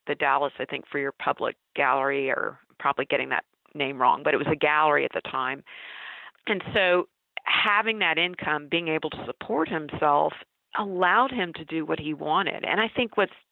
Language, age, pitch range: English, 40-59, 145-175 Hz